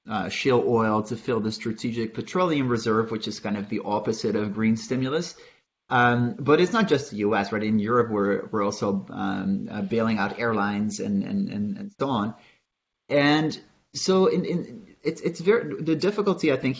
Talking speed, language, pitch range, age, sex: 190 wpm, English, 110-130 Hz, 30-49, male